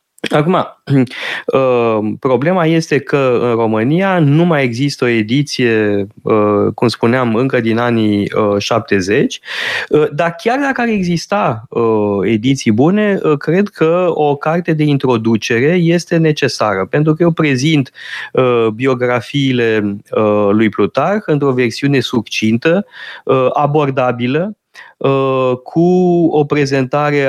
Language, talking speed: Romanian, 100 wpm